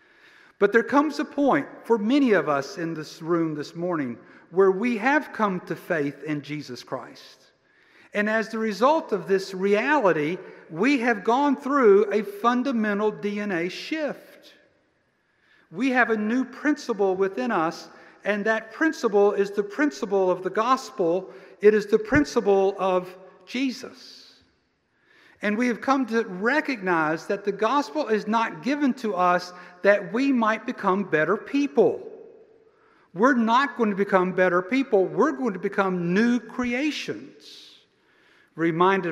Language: English